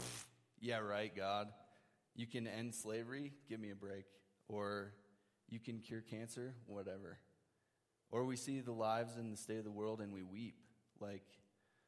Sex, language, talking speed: male, English, 160 wpm